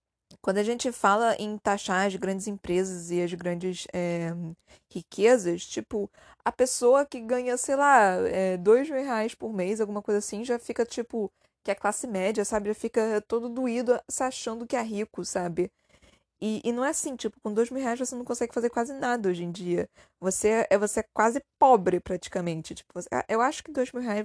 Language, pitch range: Portuguese, 175-235 Hz